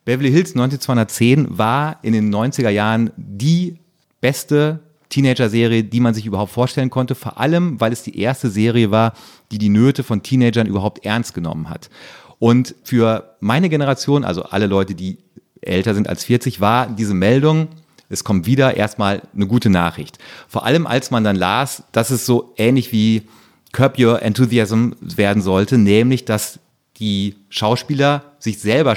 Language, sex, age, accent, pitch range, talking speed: German, male, 40-59, German, 105-130 Hz, 160 wpm